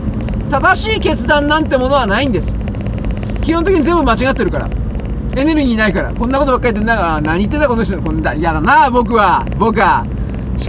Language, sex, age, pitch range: Japanese, male, 40-59, 235-350 Hz